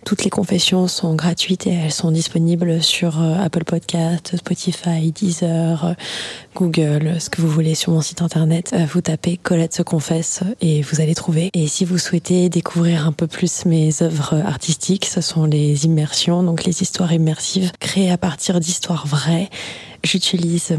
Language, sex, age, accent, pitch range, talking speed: French, female, 20-39, French, 160-180 Hz, 170 wpm